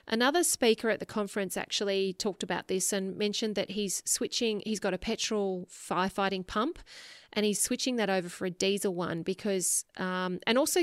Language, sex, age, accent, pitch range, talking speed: English, female, 30-49, Australian, 185-220 Hz, 185 wpm